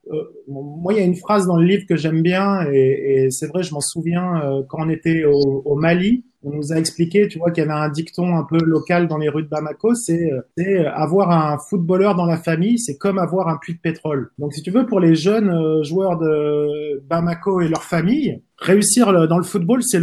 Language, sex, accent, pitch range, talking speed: French, male, French, 155-190 Hz, 250 wpm